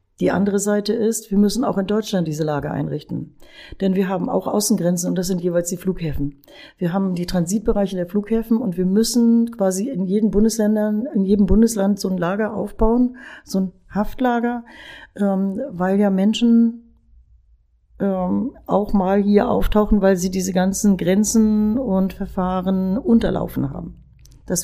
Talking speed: 150 wpm